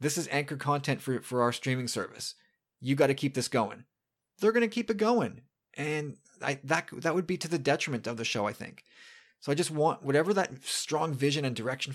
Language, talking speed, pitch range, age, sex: English, 220 wpm, 120-160 Hz, 30-49, male